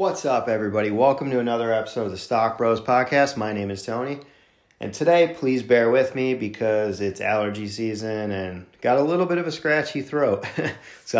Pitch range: 105-125 Hz